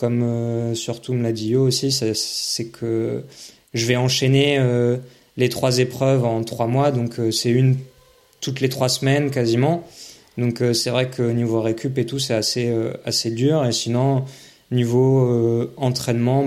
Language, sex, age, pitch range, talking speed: French, male, 20-39, 115-125 Hz, 180 wpm